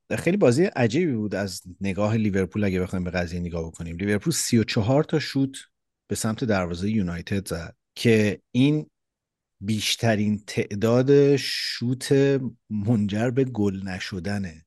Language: Persian